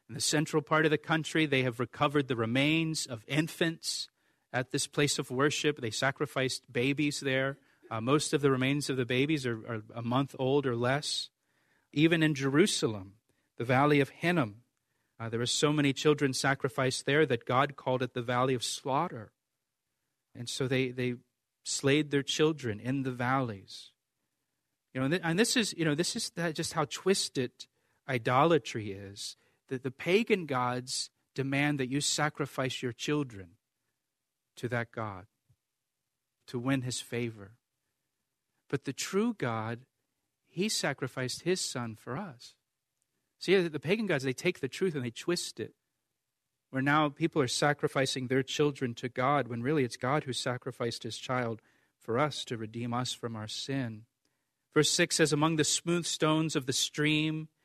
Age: 40-59